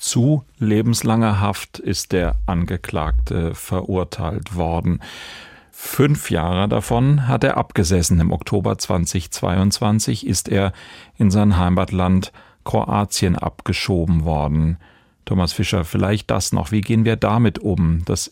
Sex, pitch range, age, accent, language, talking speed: male, 90-105 Hz, 40-59, German, German, 120 wpm